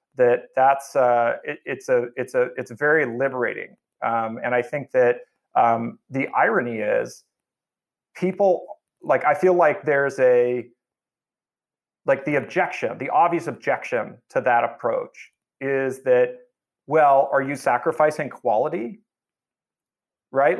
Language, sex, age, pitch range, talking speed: English, male, 30-49, 130-175 Hz, 130 wpm